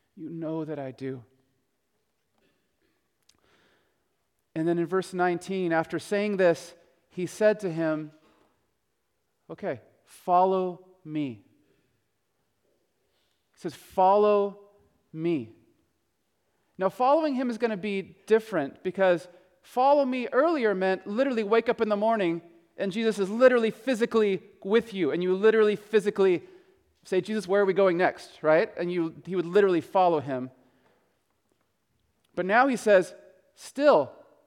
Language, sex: English, male